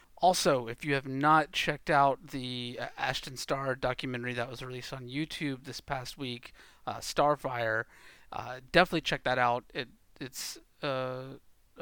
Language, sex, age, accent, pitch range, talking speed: English, male, 30-49, American, 125-145 Hz, 150 wpm